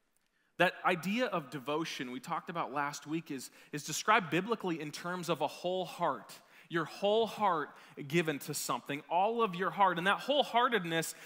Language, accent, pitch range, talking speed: English, American, 170-230 Hz, 170 wpm